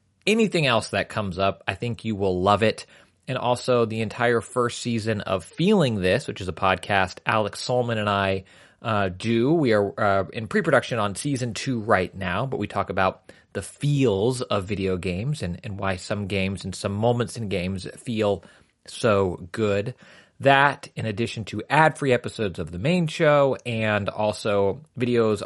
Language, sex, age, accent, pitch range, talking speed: English, male, 30-49, American, 100-125 Hz, 175 wpm